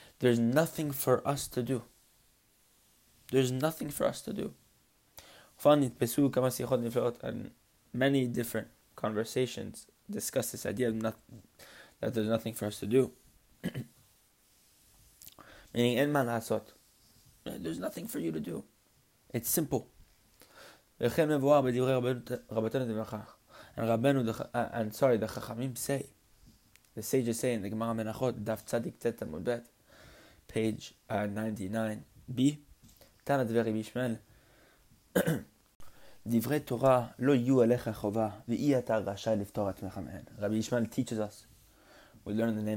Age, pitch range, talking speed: 20-39, 105-125 Hz, 95 wpm